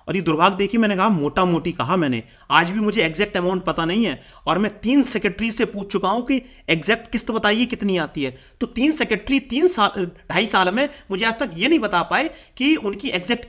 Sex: male